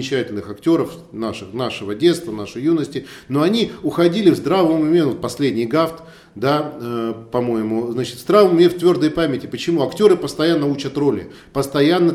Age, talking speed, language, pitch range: 40-59, 155 wpm, Russian, 135-175 Hz